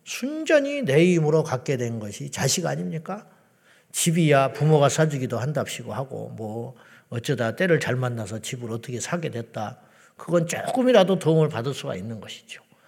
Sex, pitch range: male, 125-165 Hz